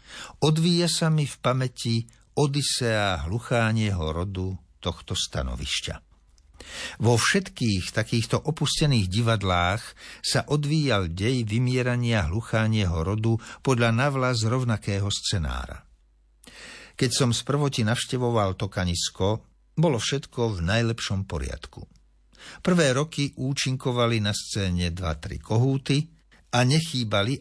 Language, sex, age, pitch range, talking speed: Slovak, male, 60-79, 90-135 Hz, 100 wpm